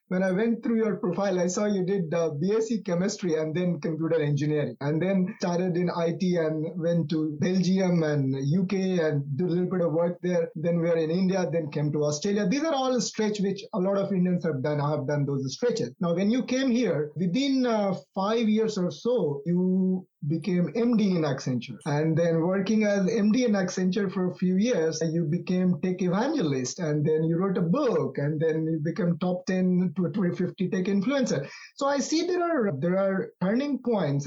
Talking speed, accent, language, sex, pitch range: 205 wpm, Indian, English, male, 165-205 Hz